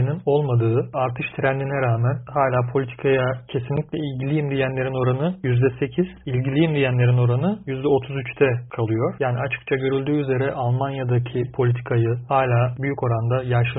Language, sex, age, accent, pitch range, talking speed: Turkish, male, 40-59, native, 125-145 Hz, 115 wpm